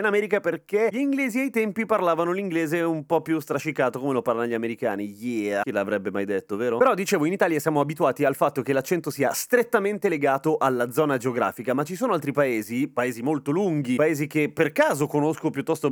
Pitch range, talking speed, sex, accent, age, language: 125-175 Hz, 205 wpm, male, native, 30-49, Italian